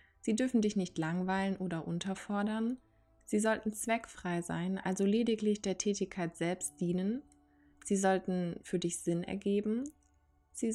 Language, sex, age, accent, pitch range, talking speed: German, female, 20-39, German, 180-210 Hz, 135 wpm